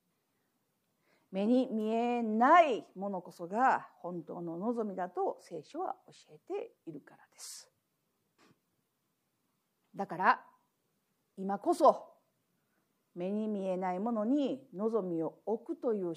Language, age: Japanese, 50-69